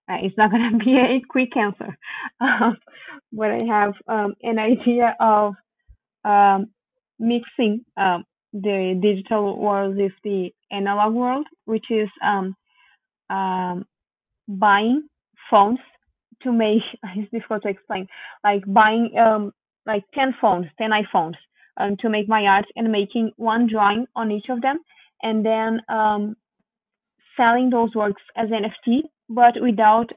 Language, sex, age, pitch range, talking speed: English, female, 20-39, 205-230 Hz, 140 wpm